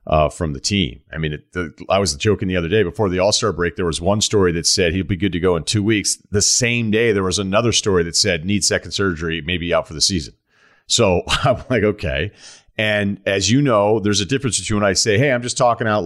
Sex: male